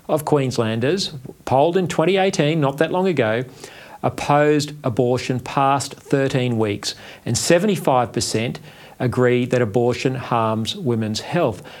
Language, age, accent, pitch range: English, 40-59, Australian, 120-165 Hz